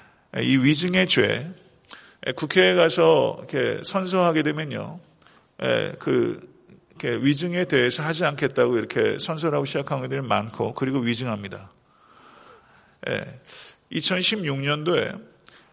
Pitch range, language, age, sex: 130-170 Hz, Korean, 40-59, male